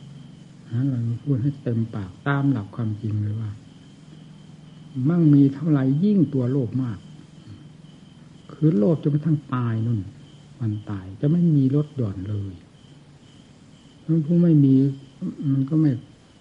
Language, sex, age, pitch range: Thai, male, 60-79, 110-145 Hz